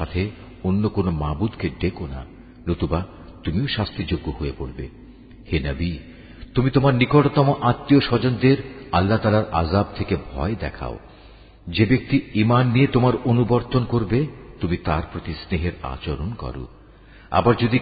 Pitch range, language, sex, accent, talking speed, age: 85-125 Hz, Bengali, male, native, 95 wpm, 50-69